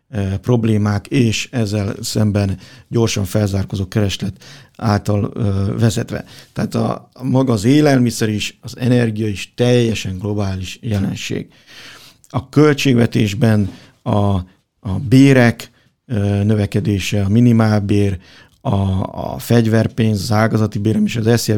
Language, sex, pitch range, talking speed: Hungarian, male, 105-125 Hz, 115 wpm